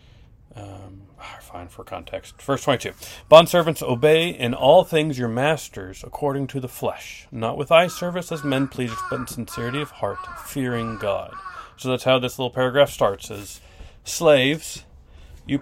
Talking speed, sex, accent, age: 160 wpm, male, American, 40-59